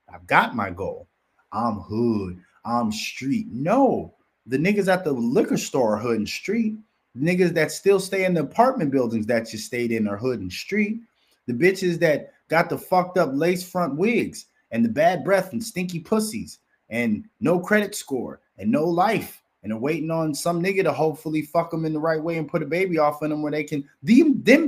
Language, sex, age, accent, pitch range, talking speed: English, male, 30-49, American, 130-185 Hz, 210 wpm